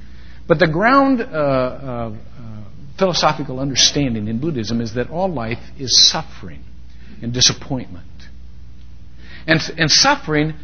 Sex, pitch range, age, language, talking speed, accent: male, 115-160 Hz, 60-79, English, 120 wpm, American